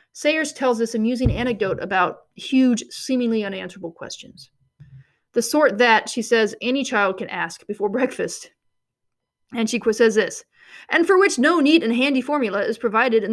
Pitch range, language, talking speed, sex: 205-265 Hz, English, 160 wpm, female